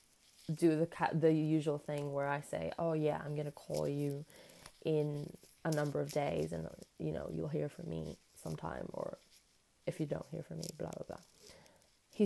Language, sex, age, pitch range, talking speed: English, female, 20-39, 160-210 Hz, 185 wpm